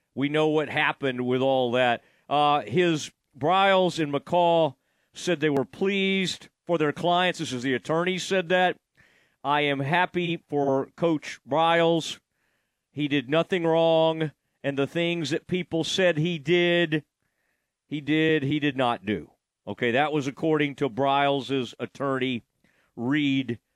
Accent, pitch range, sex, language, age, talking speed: American, 125-165 Hz, male, English, 40-59, 145 wpm